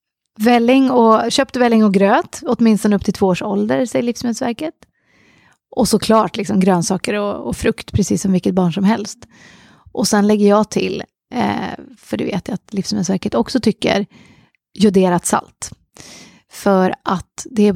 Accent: native